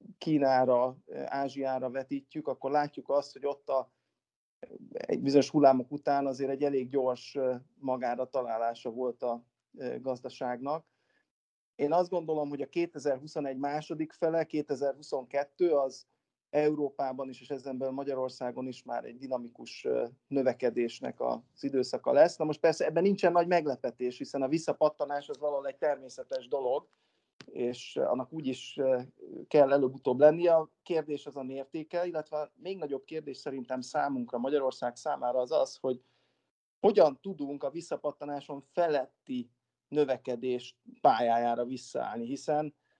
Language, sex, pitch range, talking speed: Hungarian, male, 130-150 Hz, 125 wpm